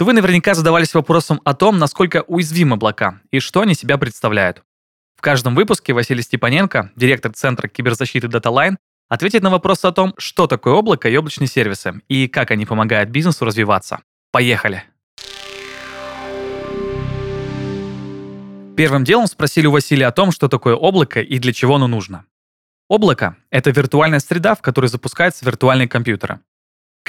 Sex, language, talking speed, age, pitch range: male, Russian, 150 wpm, 20-39, 115-155 Hz